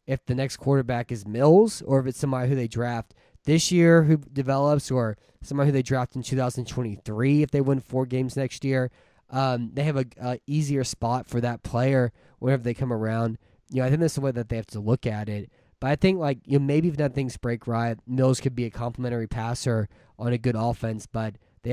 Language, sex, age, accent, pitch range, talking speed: English, male, 20-39, American, 120-135 Hz, 225 wpm